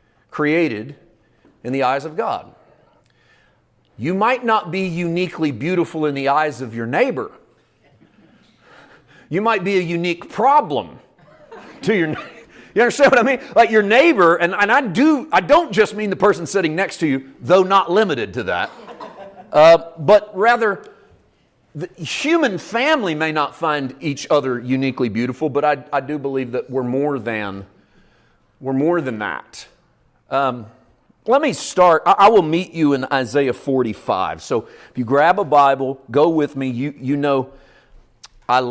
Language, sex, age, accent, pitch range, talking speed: English, male, 40-59, American, 120-170 Hz, 160 wpm